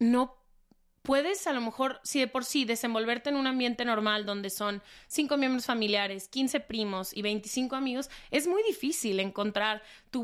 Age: 30-49